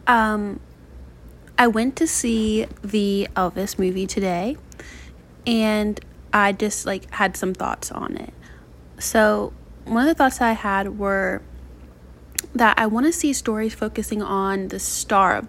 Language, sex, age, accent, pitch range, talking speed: English, female, 20-39, American, 185-220 Hz, 145 wpm